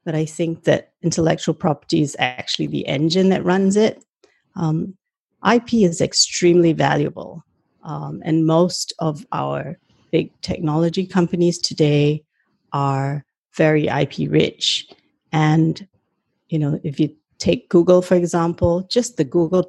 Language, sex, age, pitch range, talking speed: English, female, 40-59, 155-180 Hz, 130 wpm